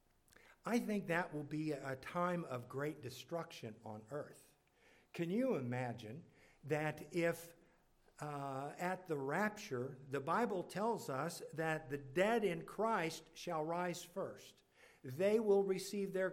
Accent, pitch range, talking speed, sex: American, 145-185 Hz, 135 wpm, male